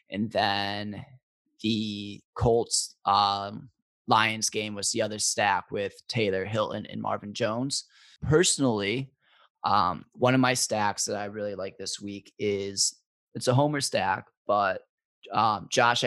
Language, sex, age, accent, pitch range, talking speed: English, male, 20-39, American, 105-125 Hz, 135 wpm